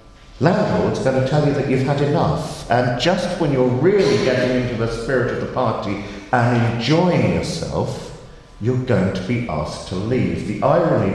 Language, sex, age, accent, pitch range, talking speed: English, male, 50-69, British, 85-115 Hz, 180 wpm